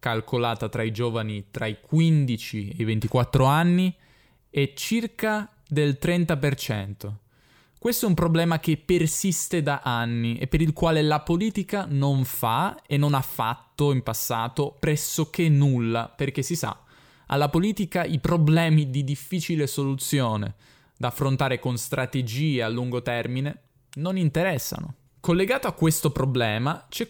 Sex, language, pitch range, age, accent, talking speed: male, Italian, 125-155 Hz, 10-29, native, 140 wpm